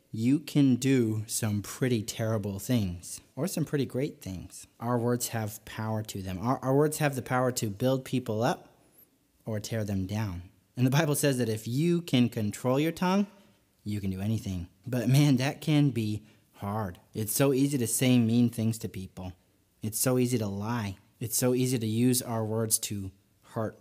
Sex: male